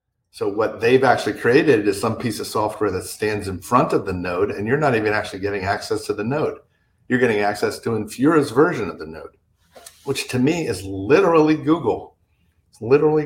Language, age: English, 50-69